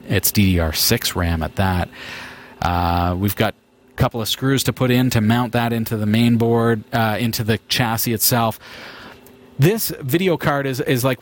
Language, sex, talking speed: English, male, 175 wpm